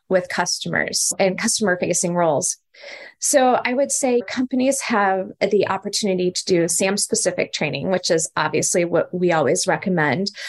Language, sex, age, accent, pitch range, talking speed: English, female, 20-39, American, 180-230 Hz, 135 wpm